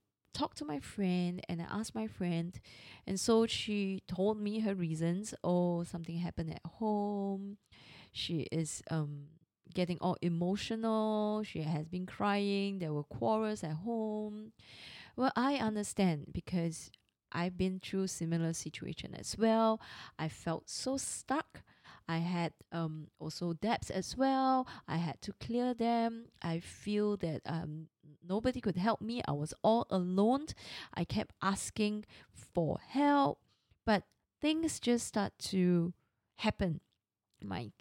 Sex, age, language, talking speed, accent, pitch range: female, 20-39, English, 140 wpm, Malaysian, 165-215 Hz